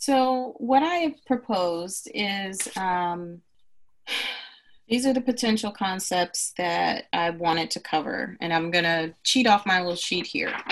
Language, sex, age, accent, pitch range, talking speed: English, female, 30-49, American, 165-205 Hz, 150 wpm